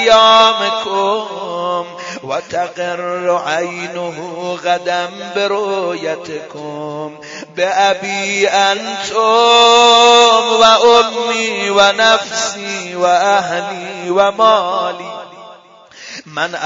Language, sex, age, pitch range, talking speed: Persian, male, 30-49, 175-225 Hz, 55 wpm